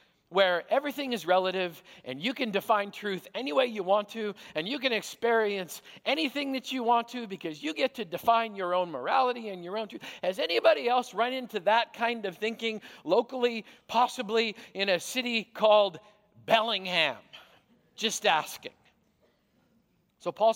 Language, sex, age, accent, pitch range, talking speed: English, male, 50-69, American, 185-240 Hz, 160 wpm